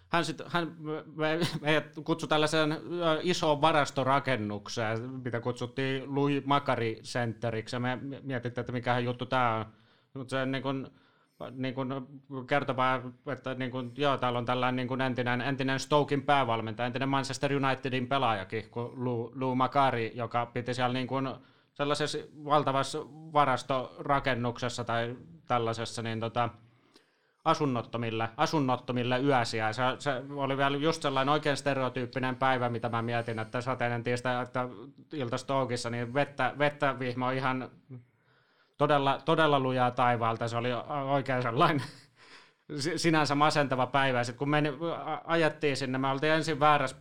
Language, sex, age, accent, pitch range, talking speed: Finnish, male, 30-49, native, 120-140 Hz, 125 wpm